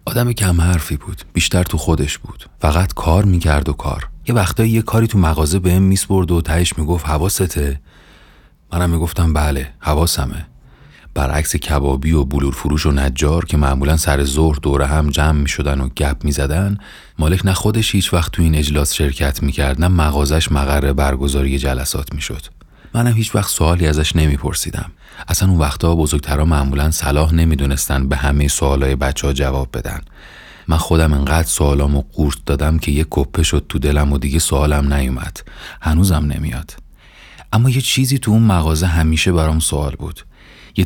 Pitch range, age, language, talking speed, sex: 75-90 Hz, 30-49, Persian, 165 wpm, male